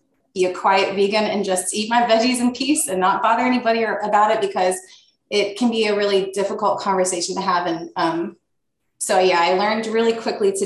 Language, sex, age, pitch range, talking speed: English, female, 20-39, 185-225 Hz, 205 wpm